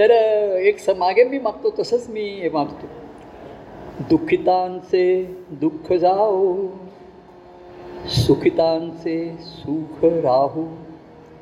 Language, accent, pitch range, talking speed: Marathi, native, 145-195 Hz, 75 wpm